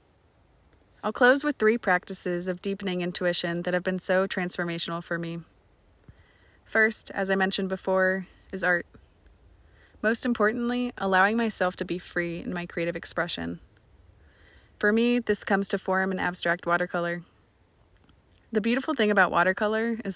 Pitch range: 170-195 Hz